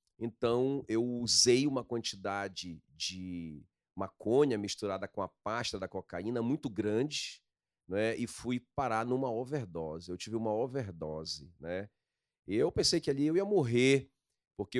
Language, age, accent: Portuguese, 40-59, Brazilian